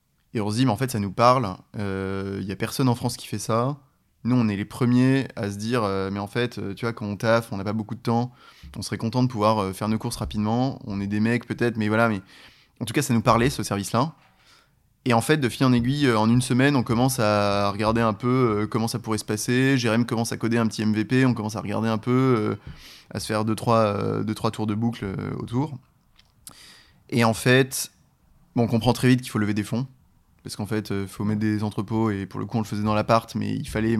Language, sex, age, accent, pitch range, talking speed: French, male, 20-39, French, 105-125 Hz, 250 wpm